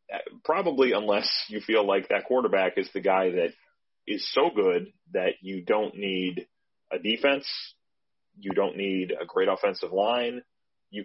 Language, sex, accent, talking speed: English, male, American, 150 wpm